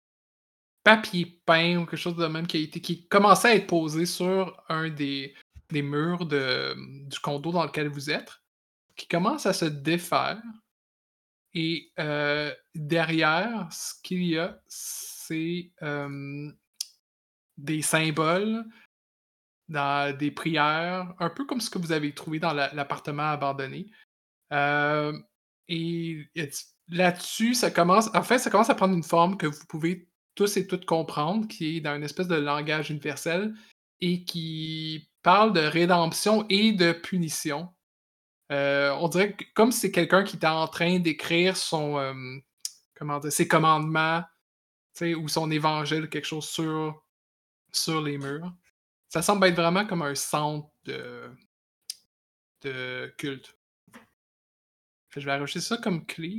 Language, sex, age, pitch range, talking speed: French, male, 20-39, 145-180 Hz, 150 wpm